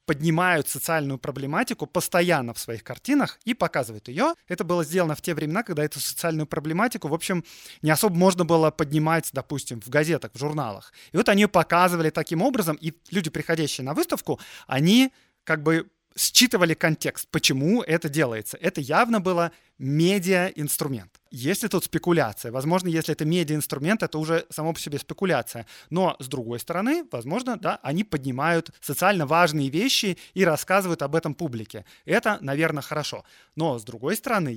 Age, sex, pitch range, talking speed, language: 20-39, male, 140-175 Hz, 160 wpm, Russian